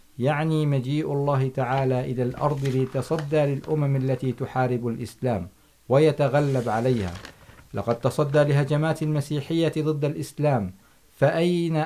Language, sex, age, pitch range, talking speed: Urdu, male, 50-69, 135-155 Hz, 100 wpm